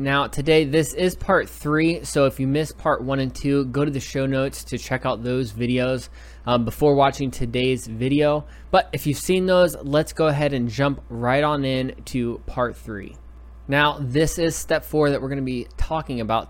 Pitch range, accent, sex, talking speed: 120-145 Hz, American, male, 205 wpm